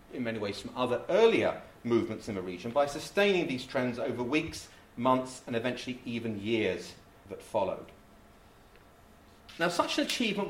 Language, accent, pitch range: English, British, 110-140 Hz